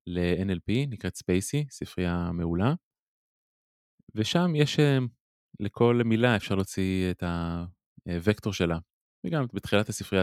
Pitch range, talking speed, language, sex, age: 95-125 Hz, 100 wpm, Hebrew, male, 20-39